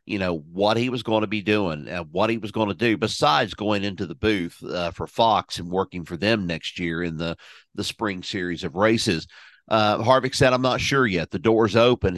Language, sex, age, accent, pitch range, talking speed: English, male, 50-69, American, 95-120 Hz, 230 wpm